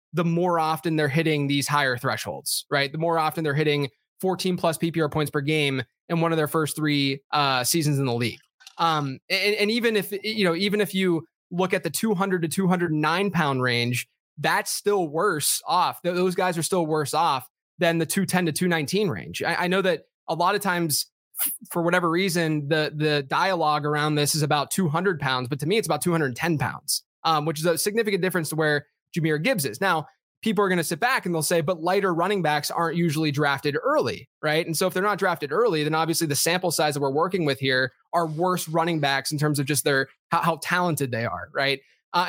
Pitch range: 145-175 Hz